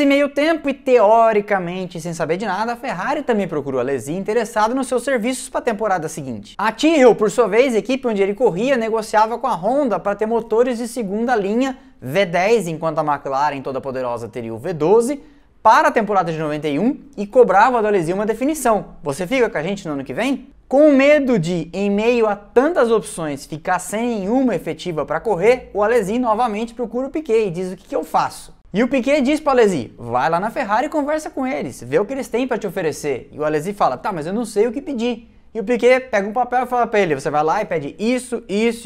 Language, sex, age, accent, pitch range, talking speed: Portuguese, male, 20-39, Brazilian, 160-245 Hz, 230 wpm